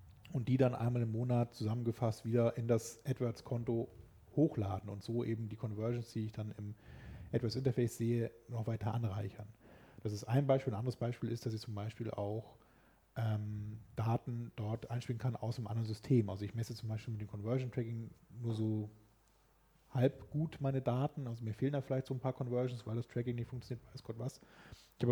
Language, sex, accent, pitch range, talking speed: German, male, German, 115-135 Hz, 195 wpm